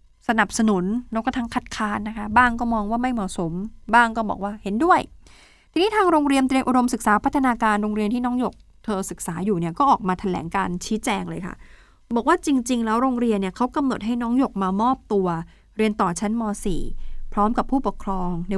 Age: 20-39